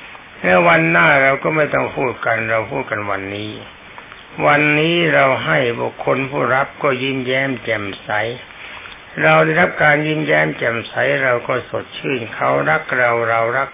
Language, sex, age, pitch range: Thai, male, 60-79, 110-150 Hz